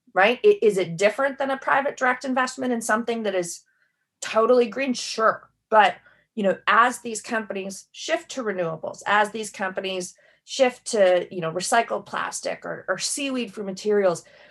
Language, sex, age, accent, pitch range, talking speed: English, female, 30-49, American, 185-230 Hz, 160 wpm